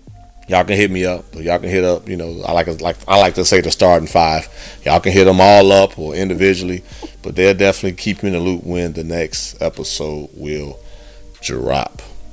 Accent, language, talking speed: American, English, 215 wpm